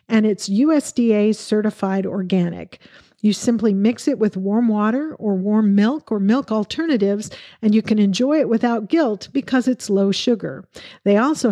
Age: 50-69